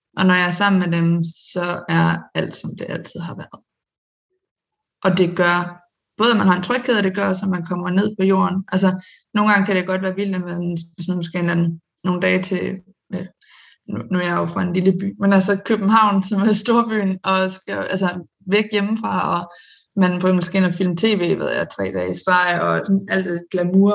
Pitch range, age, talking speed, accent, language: 175-200 Hz, 20-39, 220 wpm, native, Danish